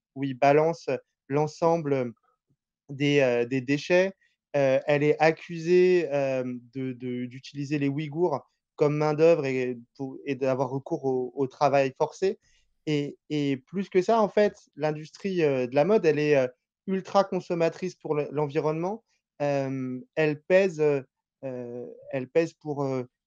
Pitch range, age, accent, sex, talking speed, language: 140-165 Hz, 20-39, French, male, 140 wpm, French